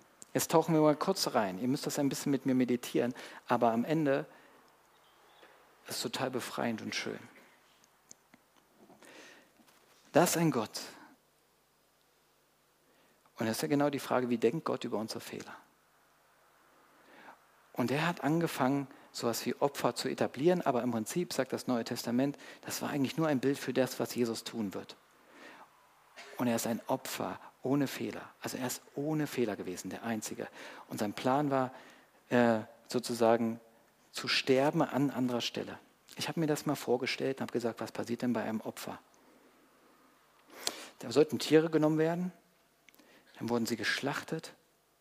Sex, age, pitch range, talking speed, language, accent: male, 50-69, 115-145 Hz, 160 wpm, German, German